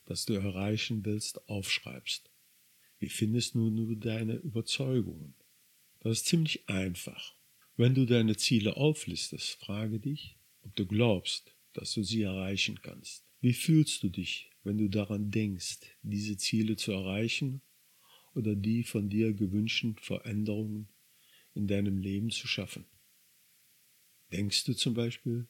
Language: German